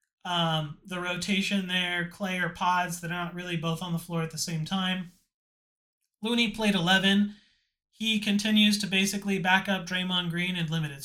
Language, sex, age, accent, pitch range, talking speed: English, male, 30-49, American, 175-210 Hz, 170 wpm